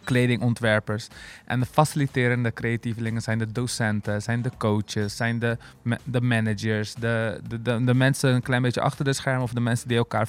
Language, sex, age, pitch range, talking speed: Dutch, male, 20-39, 115-135 Hz, 180 wpm